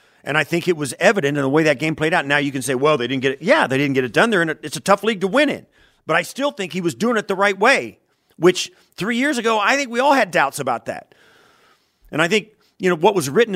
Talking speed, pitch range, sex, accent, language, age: 300 wpm, 155-240 Hz, male, American, English, 40-59